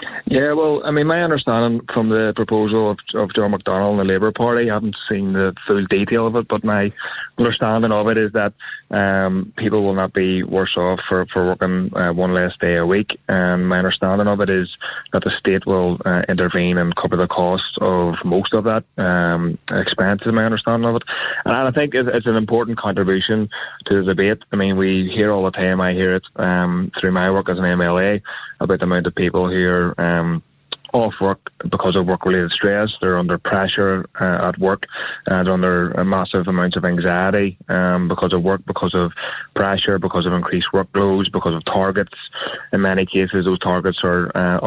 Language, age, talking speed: English, 20-39, 200 wpm